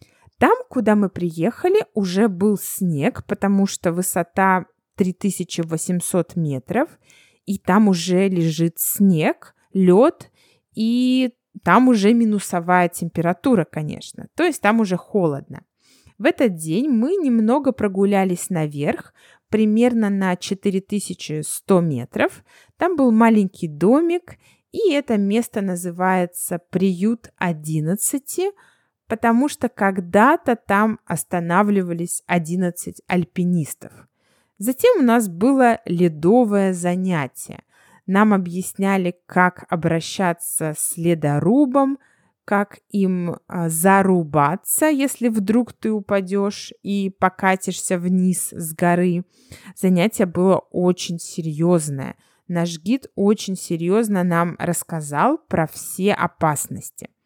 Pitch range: 175-220 Hz